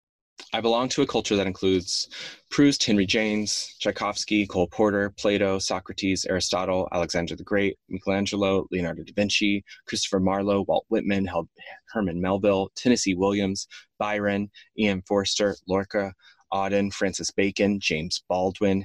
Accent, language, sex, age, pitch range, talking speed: American, English, male, 20-39, 90-105 Hz, 125 wpm